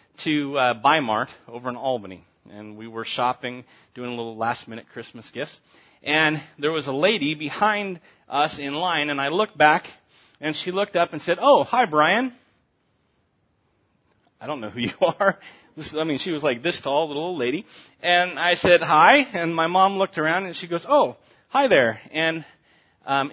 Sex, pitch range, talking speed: male, 130-175 Hz, 190 wpm